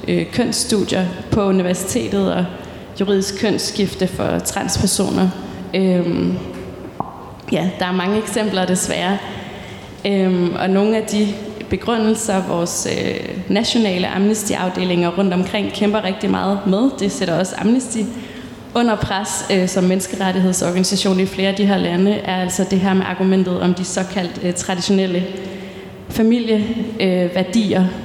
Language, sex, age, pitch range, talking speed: Danish, female, 20-39, 185-205 Hz, 125 wpm